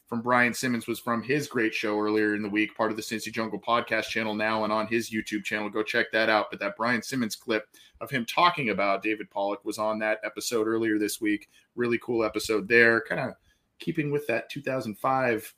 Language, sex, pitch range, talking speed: English, male, 110-135 Hz, 220 wpm